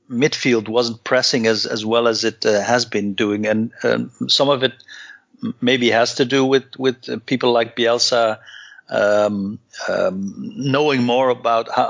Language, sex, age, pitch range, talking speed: English, male, 50-69, 115-140 Hz, 170 wpm